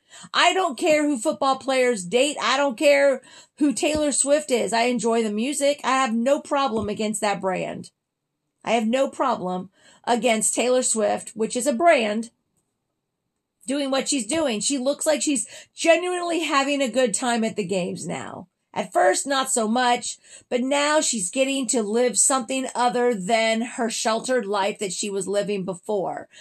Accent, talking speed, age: American, 170 wpm, 40-59